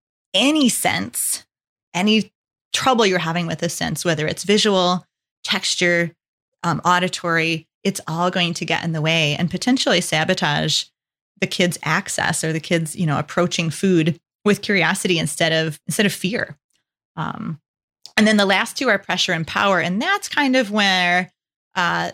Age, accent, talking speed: 20-39, American, 160 wpm